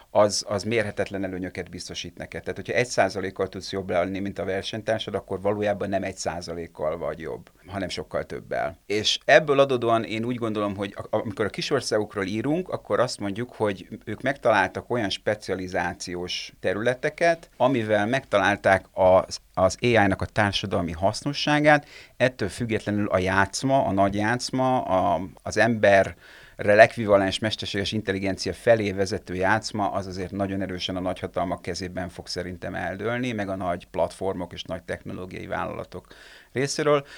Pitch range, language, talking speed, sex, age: 95-115 Hz, Hungarian, 145 wpm, male, 30-49